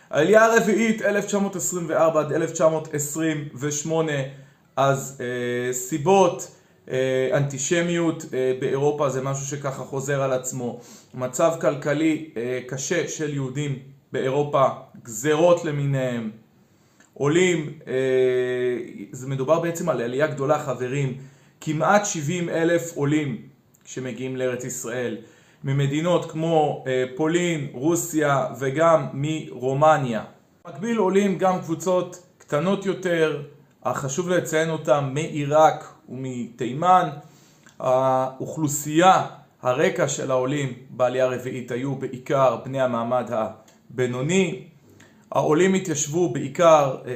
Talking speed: 95 wpm